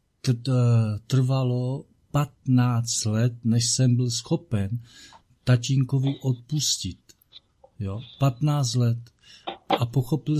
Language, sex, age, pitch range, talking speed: Czech, male, 50-69, 115-135 Hz, 80 wpm